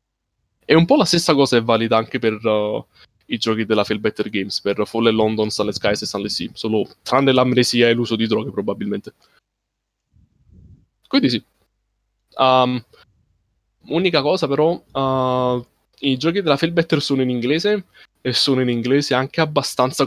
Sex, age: male, 20-39